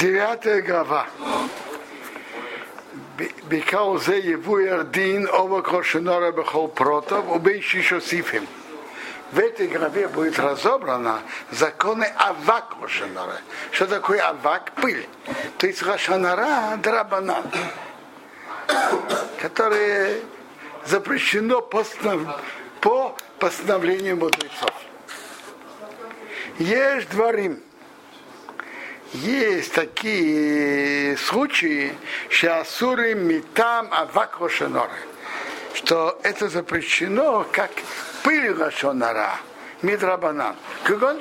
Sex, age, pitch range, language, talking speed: male, 60-79, 175-250 Hz, Russian, 50 wpm